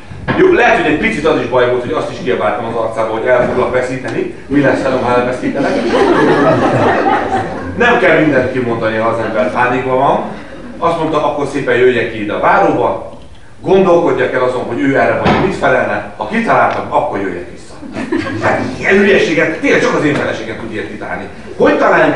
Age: 30-49